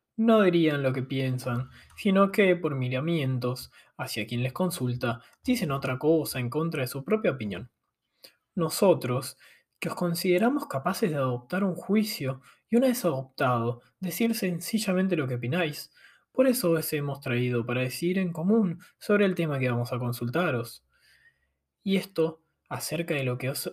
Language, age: Spanish, 20-39